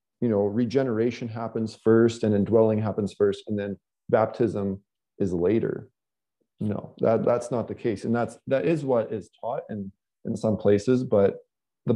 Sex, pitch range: male, 100-125 Hz